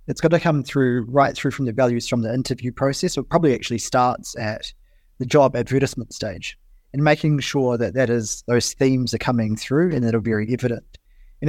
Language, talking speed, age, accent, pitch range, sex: English, 215 wpm, 20-39, Australian, 115-135 Hz, male